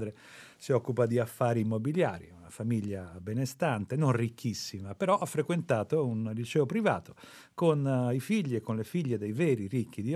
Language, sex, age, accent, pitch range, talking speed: Italian, male, 40-59, native, 115-155 Hz, 160 wpm